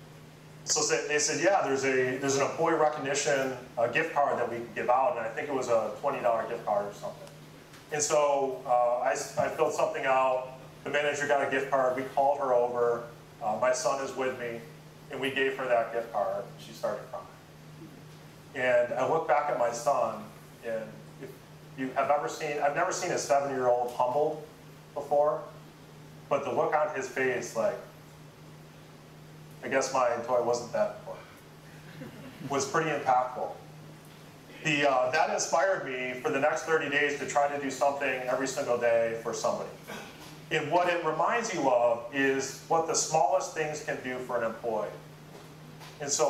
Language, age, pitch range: English, 30-49, 125-155 Hz